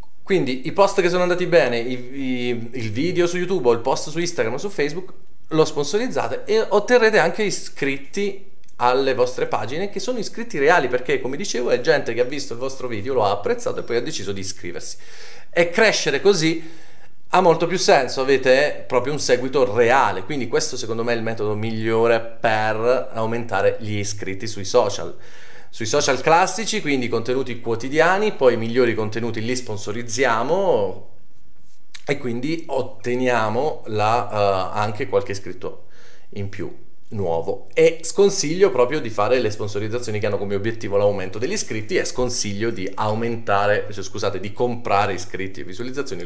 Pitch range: 110-185 Hz